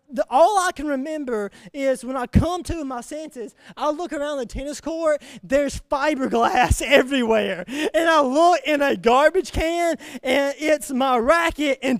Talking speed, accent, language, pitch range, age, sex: 165 wpm, American, English, 220-310 Hz, 20-39, male